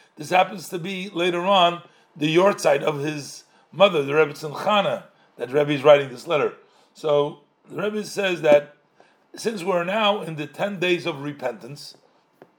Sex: male